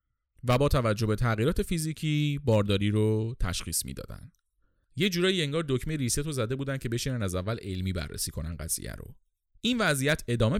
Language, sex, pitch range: Persian, male, 100-150 Hz